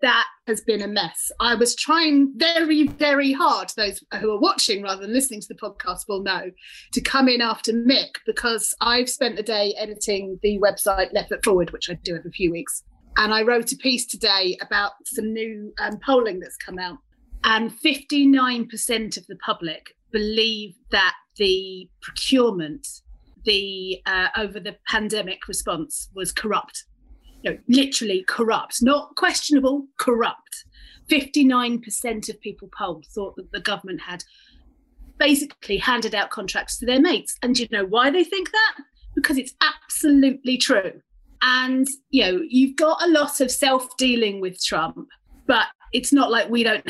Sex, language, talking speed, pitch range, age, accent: female, English, 160 wpm, 205-270 Hz, 30-49, British